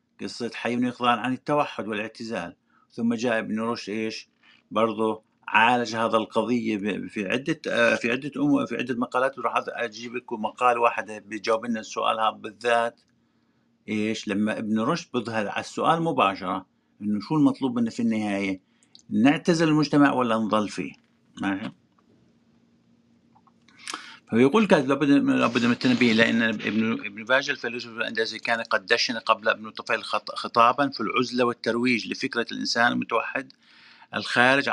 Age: 50-69